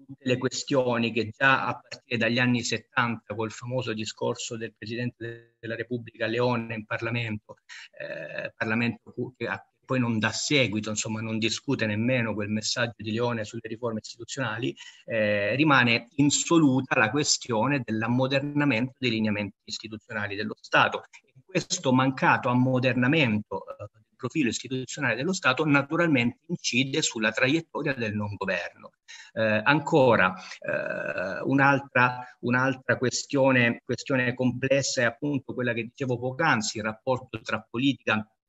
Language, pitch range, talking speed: Italian, 115-135 Hz, 125 wpm